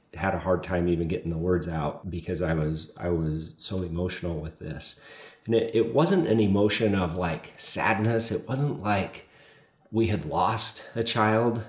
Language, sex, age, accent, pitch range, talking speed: English, male, 40-59, American, 85-105 Hz, 180 wpm